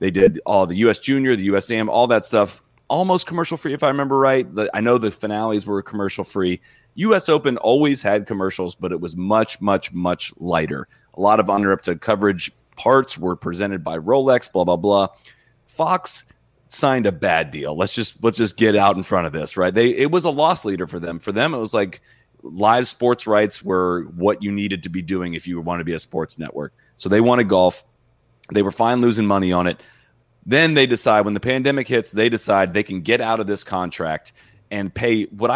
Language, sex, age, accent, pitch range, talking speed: English, male, 30-49, American, 95-120 Hz, 220 wpm